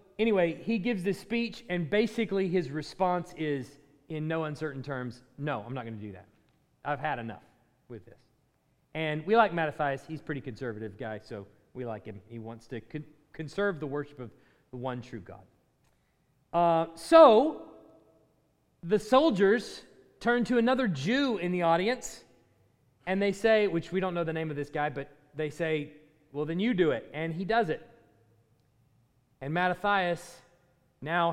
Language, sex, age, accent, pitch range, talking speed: English, male, 30-49, American, 130-190 Hz, 170 wpm